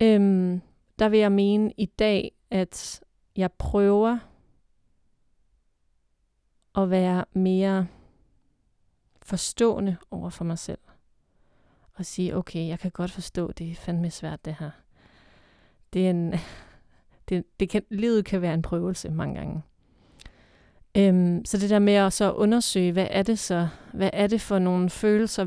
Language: Danish